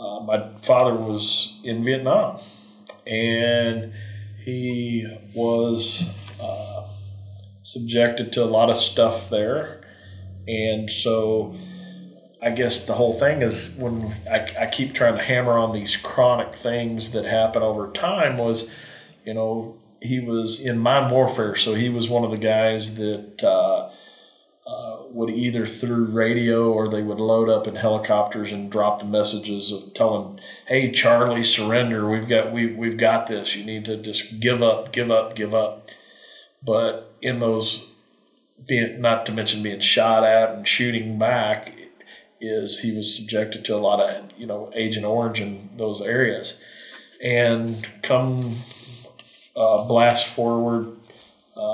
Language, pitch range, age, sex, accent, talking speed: English, 110-120 Hz, 40-59, male, American, 145 wpm